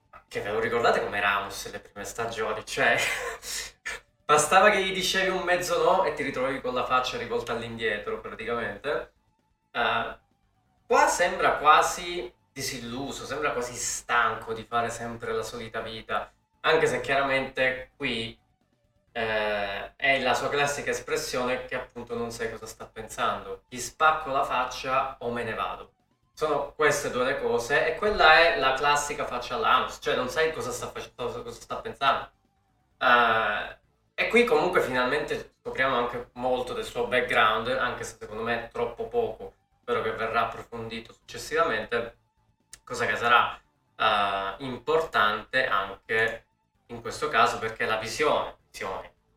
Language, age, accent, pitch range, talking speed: Italian, 20-39, native, 115-155 Hz, 145 wpm